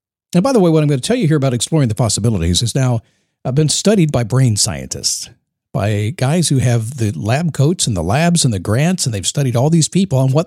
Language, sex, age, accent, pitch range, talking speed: English, male, 50-69, American, 120-165 Hz, 250 wpm